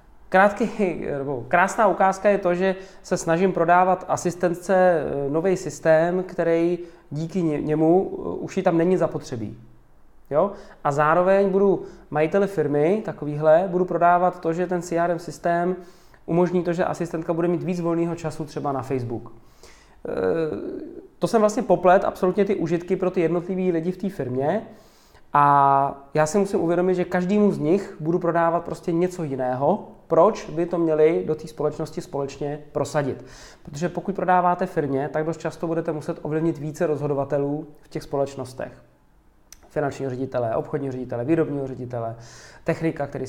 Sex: male